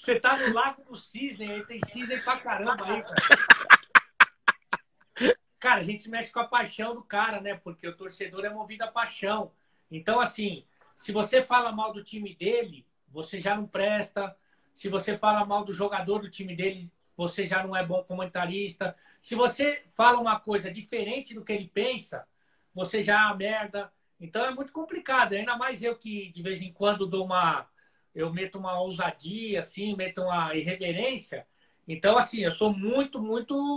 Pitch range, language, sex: 195-240 Hz, Portuguese, male